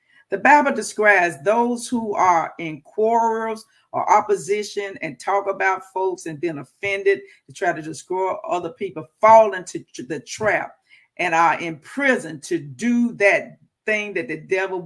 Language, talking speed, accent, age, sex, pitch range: English, 150 wpm, American, 50-69, female, 170-220 Hz